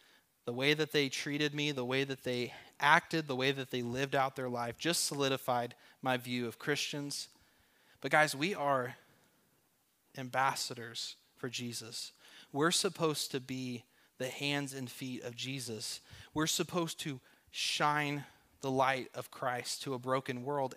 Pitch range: 125-150 Hz